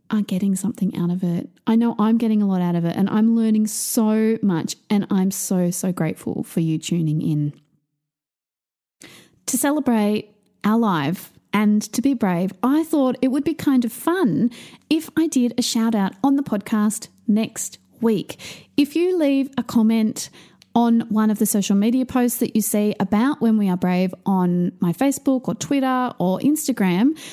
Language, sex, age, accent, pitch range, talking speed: English, female, 30-49, Australian, 195-250 Hz, 180 wpm